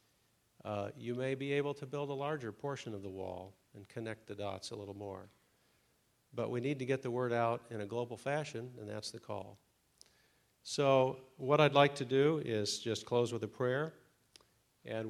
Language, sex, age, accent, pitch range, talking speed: English, male, 50-69, American, 105-130 Hz, 195 wpm